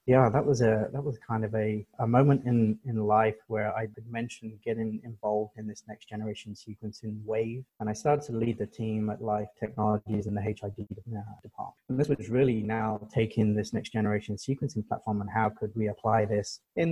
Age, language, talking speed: 30-49, English, 205 wpm